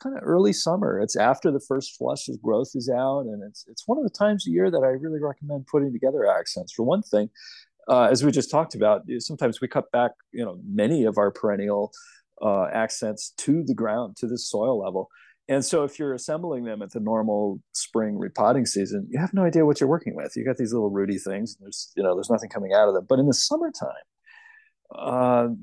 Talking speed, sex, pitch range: 230 wpm, male, 105-160 Hz